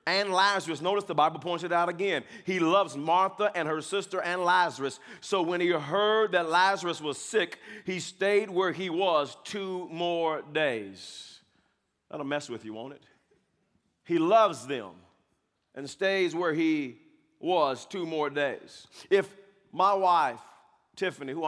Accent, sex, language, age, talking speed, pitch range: American, male, English, 40-59, 150 wpm, 155-200 Hz